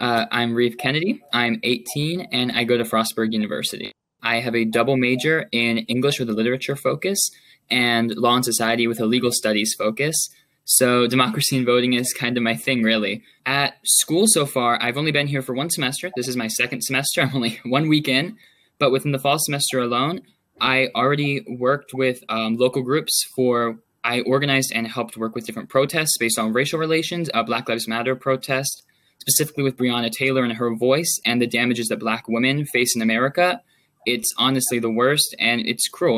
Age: 10-29